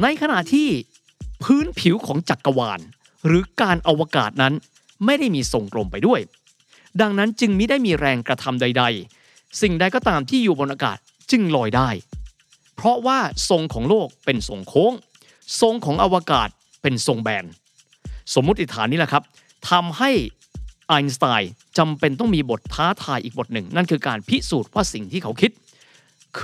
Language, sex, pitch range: Thai, male, 130-205 Hz